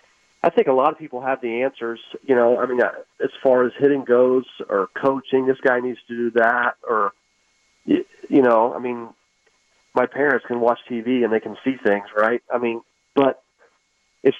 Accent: American